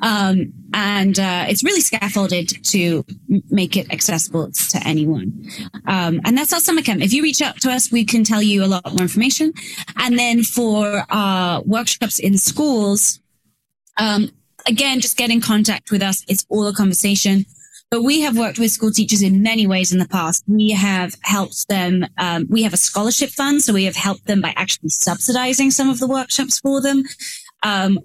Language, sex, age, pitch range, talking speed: English, female, 20-39, 190-235 Hz, 195 wpm